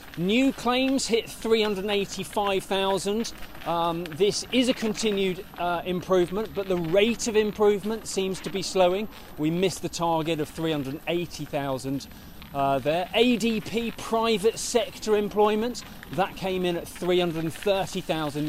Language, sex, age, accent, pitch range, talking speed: English, male, 30-49, British, 160-220 Hz, 115 wpm